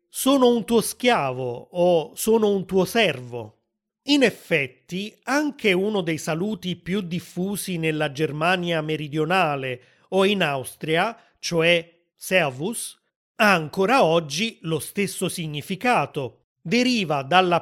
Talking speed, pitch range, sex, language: 110 wpm, 155-205 Hz, male, Italian